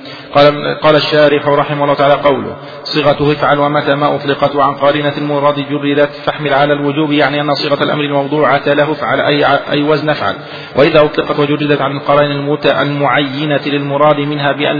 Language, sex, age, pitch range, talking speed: Arabic, male, 40-59, 140-150 Hz, 160 wpm